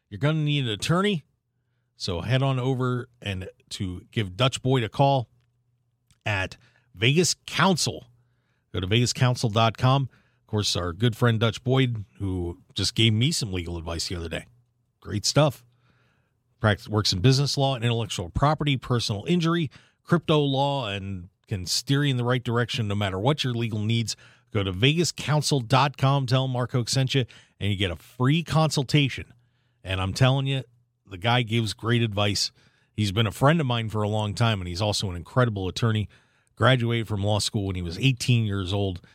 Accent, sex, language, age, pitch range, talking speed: American, male, English, 40-59, 105-140 Hz, 175 wpm